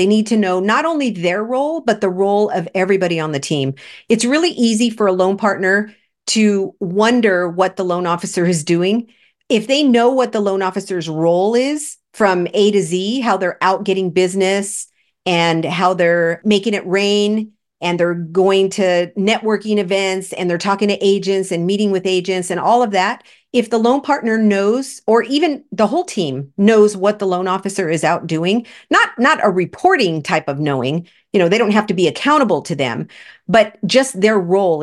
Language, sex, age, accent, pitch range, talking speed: English, female, 50-69, American, 180-220 Hz, 195 wpm